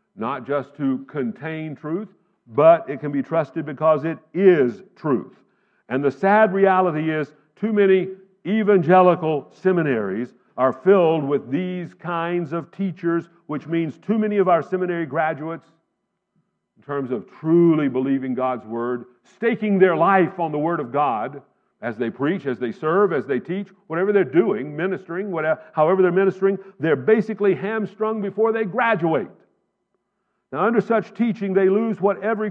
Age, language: 50-69, English